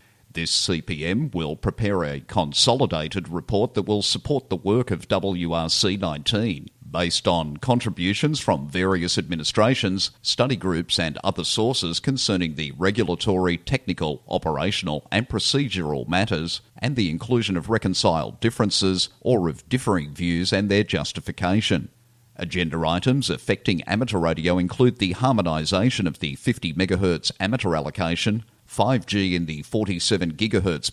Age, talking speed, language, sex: 50-69, 130 wpm, English, male